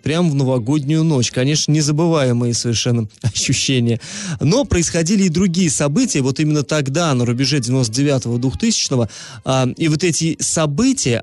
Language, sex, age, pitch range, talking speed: Russian, male, 20-39, 125-160 Hz, 130 wpm